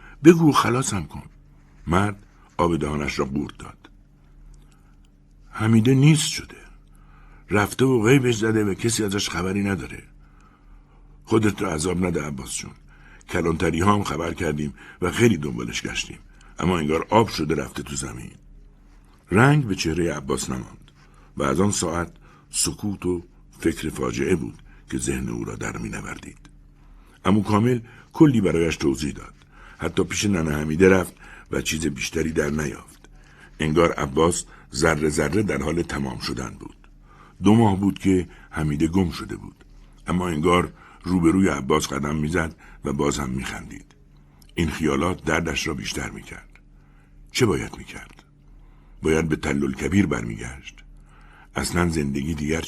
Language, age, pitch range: Persian, 60-79, 70-95 Hz